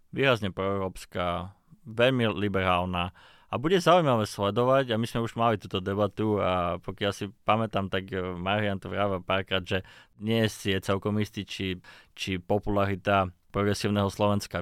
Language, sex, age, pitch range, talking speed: Slovak, male, 20-39, 95-125 Hz, 145 wpm